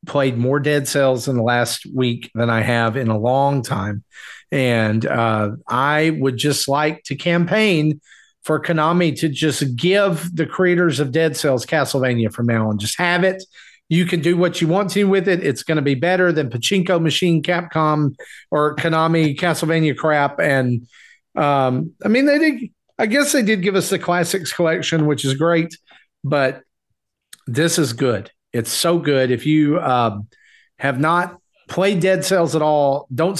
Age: 40-59